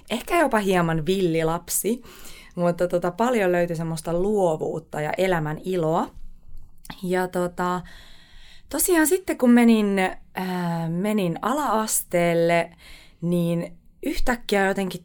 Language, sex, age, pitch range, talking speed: Finnish, female, 20-39, 165-210 Hz, 100 wpm